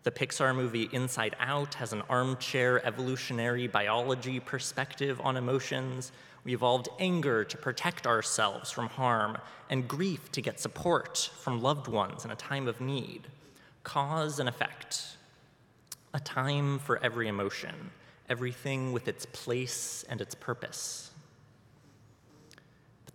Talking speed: 130 wpm